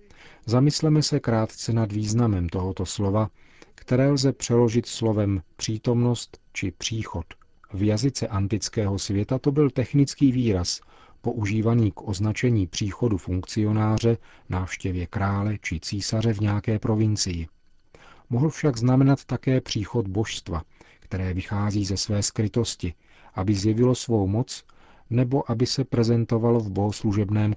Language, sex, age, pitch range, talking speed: Czech, male, 40-59, 95-120 Hz, 120 wpm